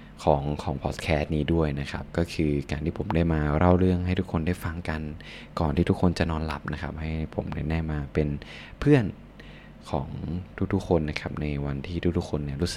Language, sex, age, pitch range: Thai, male, 20-39, 75-90 Hz